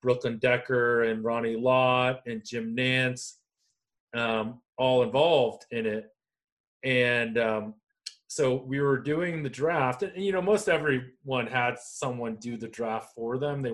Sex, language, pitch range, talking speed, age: male, English, 115-150 Hz, 155 wpm, 30-49